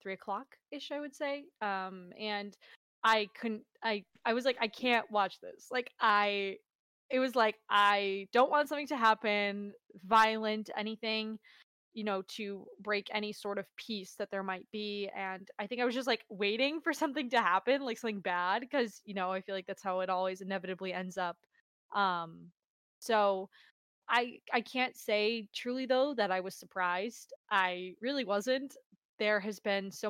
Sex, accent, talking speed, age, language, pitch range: female, American, 175 wpm, 20-39, English, 190-230 Hz